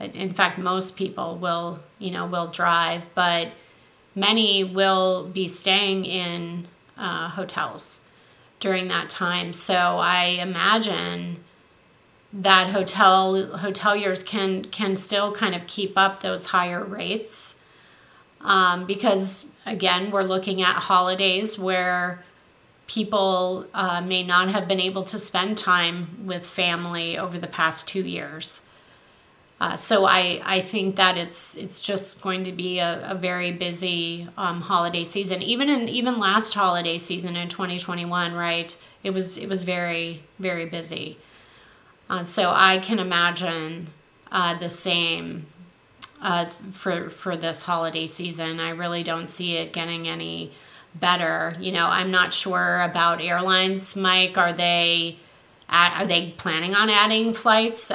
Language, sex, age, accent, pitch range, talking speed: English, female, 30-49, American, 175-195 Hz, 140 wpm